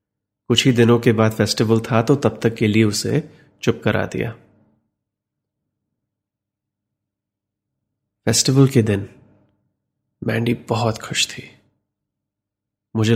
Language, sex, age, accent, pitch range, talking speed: Hindi, male, 30-49, native, 105-125 Hz, 110 wpm